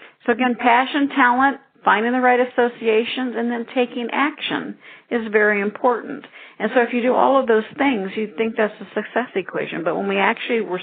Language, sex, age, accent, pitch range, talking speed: English, female, 50-69, American, 185-245 Hz, 195 wpm